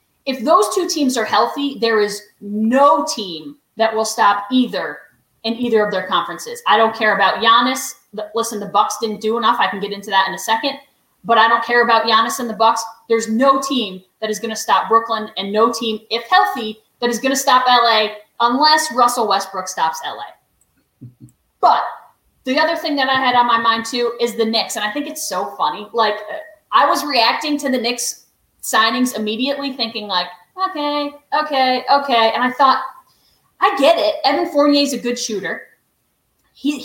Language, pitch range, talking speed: English, 220-290 Hz, 195 wpm